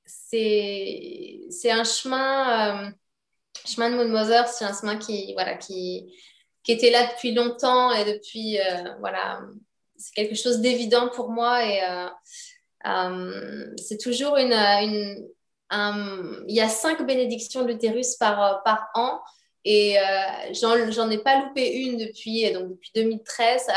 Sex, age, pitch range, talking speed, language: female, 20-39, 205-245 Hz, 150 wpm, French